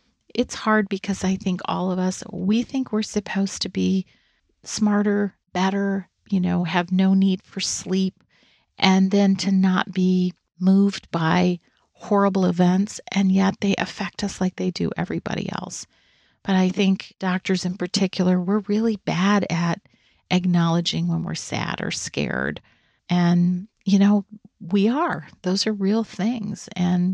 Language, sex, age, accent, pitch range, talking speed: English, female, 40-59, American, 175-205 Hz, 150 wpm